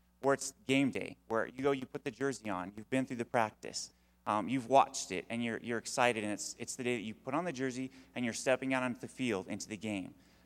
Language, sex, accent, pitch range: English, male, American, 110-135 Hz